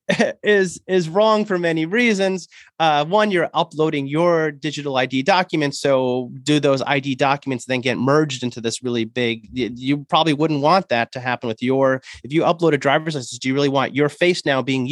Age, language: 30-49, English